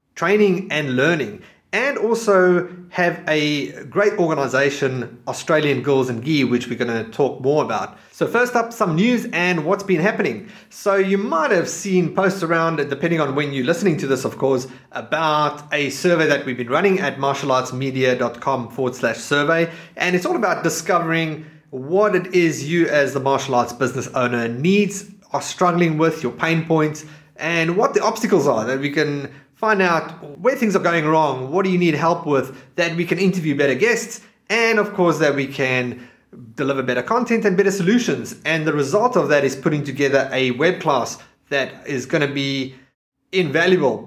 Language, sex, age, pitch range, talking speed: English, male, 30-49, 135-180 Hz, 185 wpm